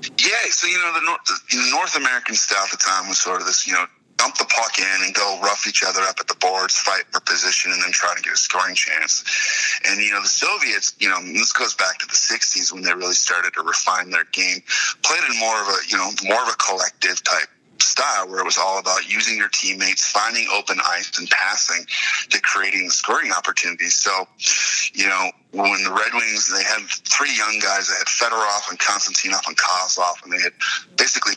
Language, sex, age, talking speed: English, male, 30-49, 225 wpm